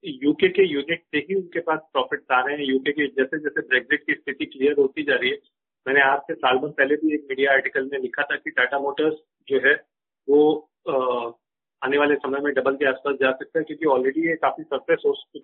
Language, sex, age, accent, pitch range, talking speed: Hindi, male, 40-59, native, 145-195 Hz, 230 wpm